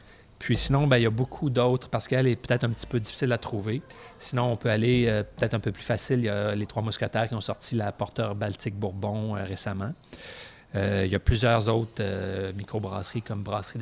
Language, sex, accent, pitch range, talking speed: French, male, Canadian, 100-120 Hz, 235 wpm